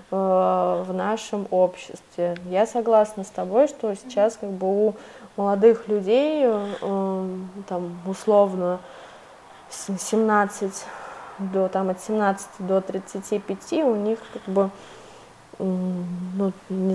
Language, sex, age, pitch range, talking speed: Russian, female, 20-39, 185-210 Hz, 105 wpm